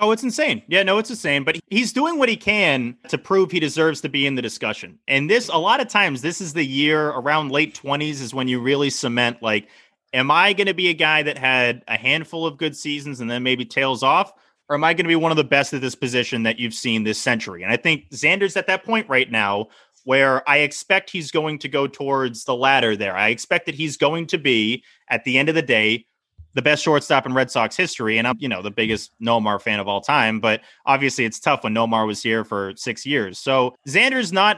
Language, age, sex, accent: English, 30-49, male, American